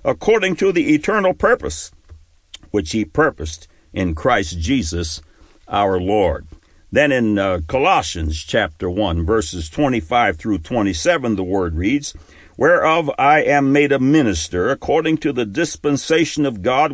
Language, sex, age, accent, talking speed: English, male, 60-79, American, 135 wpm